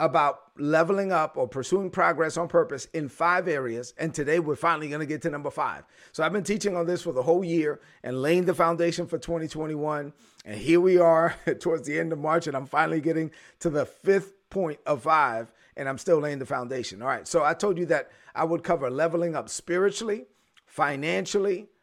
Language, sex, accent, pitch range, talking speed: English, male, American, 145-175 Hz, 210 wpm